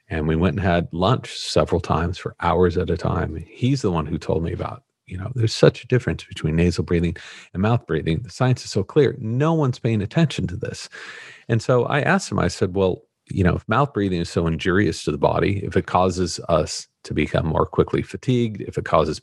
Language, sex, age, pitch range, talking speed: English, male, 40-59, 90-125 Hz, 230 wpm